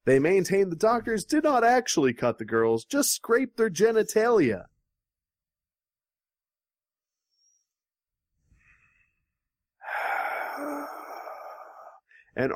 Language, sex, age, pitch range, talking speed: English, male, 30-49, 130-205 Hz, 70 wpm